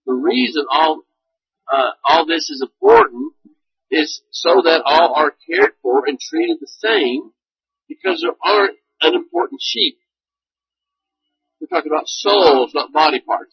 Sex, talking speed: male, 140 wpm